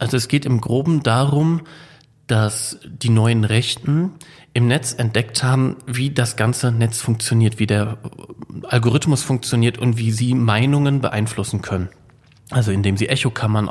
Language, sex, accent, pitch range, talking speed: German, male, German, 110-130 Hz, 145 wpm